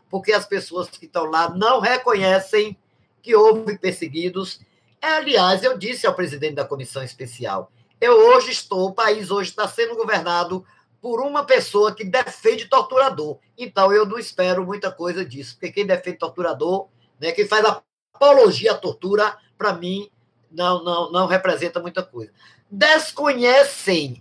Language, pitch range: Portuguese, 175-245 Hz